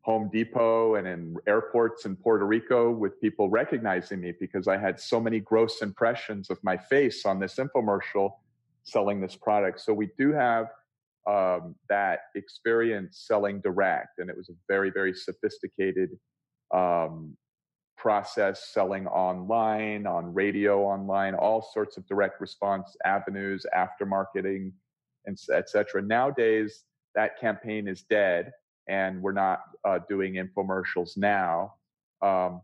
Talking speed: 140 wpm